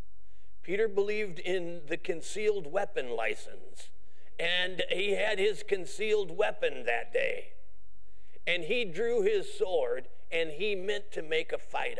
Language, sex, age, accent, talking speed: English, male, 50-69, American, 135 wpm